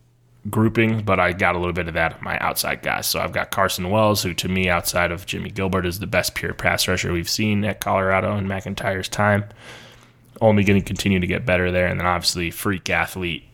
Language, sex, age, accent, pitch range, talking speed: English, male, 20-39, American, 90-110 Hz, 220 wpm